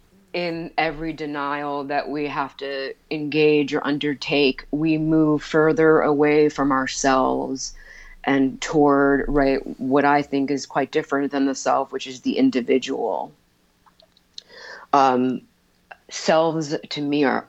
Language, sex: English, female